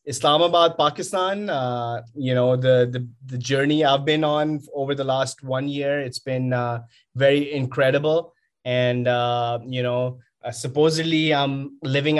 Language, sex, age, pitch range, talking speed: English, male, 20-39, 120-140 Hz, 145 wpm